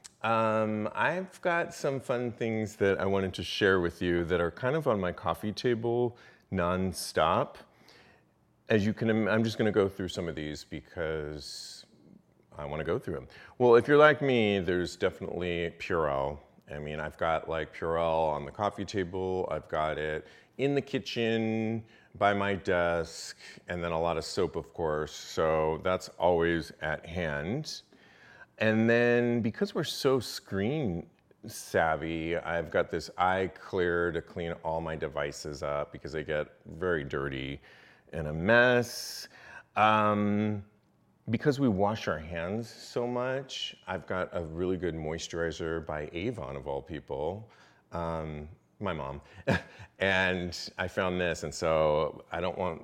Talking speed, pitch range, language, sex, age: 155 wpm, 80-110 Hz, English, male, 40-59